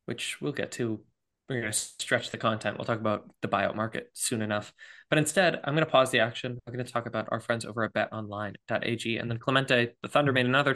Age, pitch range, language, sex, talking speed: 20-39, 115-140 Hz, English, male, 240 wpm